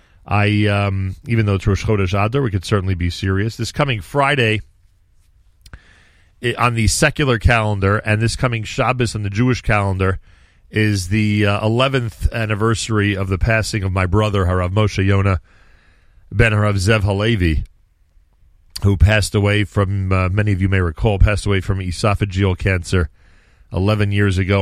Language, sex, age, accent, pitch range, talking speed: English, male, 40-59, American, 90-115 Hz, 155 wpm